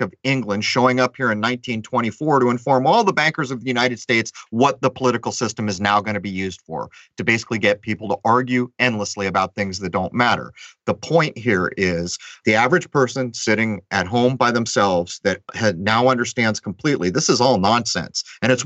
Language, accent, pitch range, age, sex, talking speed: English, American, 105-130 Hz, 40-59, male, 195 wpm